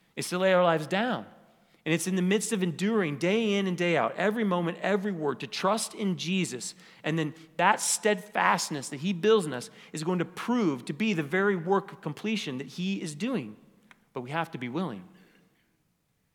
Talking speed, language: 205 wpm, English